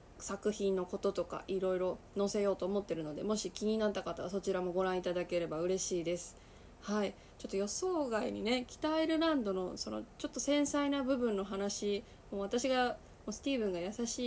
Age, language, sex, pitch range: 20-39, Japanese, female, 185-235 Hz